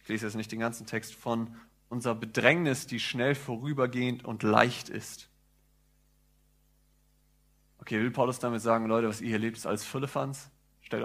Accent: German